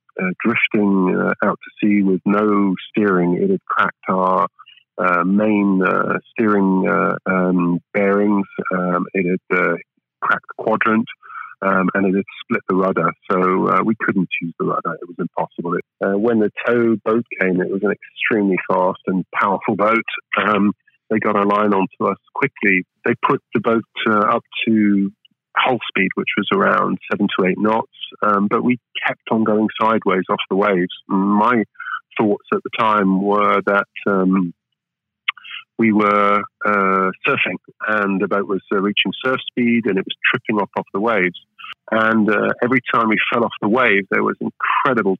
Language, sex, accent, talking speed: English, male, British, 175 wpm